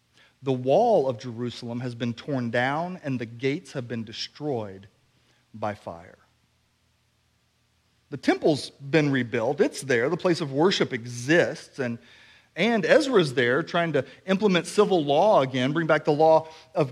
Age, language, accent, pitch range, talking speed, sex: 40-59, English, American, 120-165 Hz, 150 wpm, male